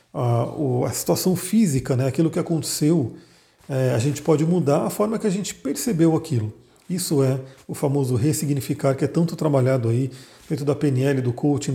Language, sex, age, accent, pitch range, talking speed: Portuguese, male, 40-59, Brazilian, 140-175 Hz, 175 wpm